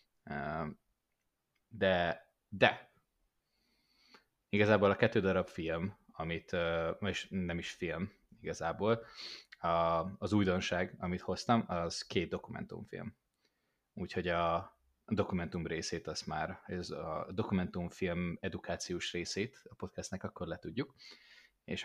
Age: 20-39